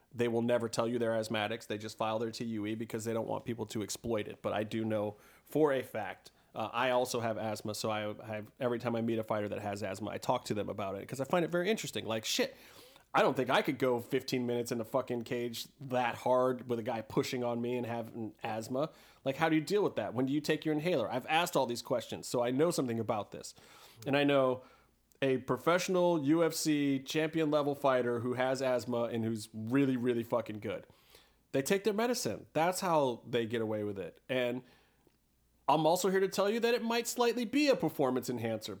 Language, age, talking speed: English, 30-49, 230 wpm